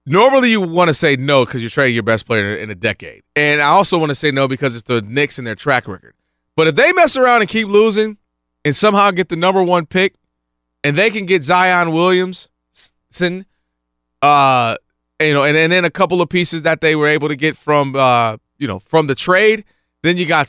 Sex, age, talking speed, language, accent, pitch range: male, 30-49, 225 wpm, English, American, 125-190 Hz